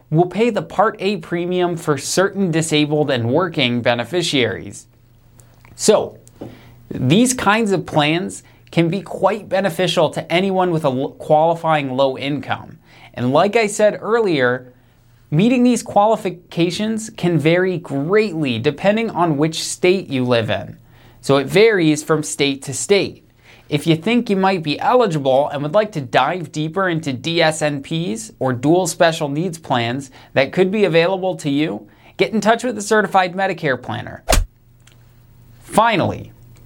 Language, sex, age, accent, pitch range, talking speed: English, male, 30-49, American, 125-185 Hz, 145 wpm